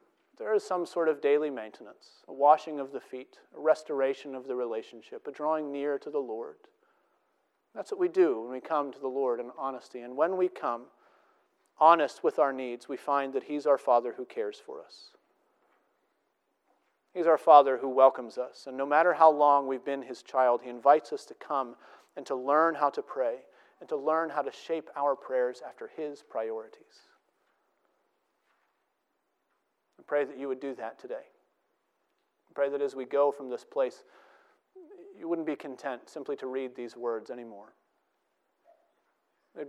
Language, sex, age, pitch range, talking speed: English, male, 40-59, 130-165 Hz, 175 wpm